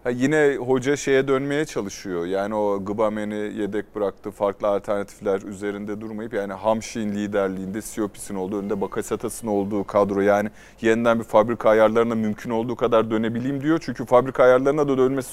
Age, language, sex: 30-49, Turkish, male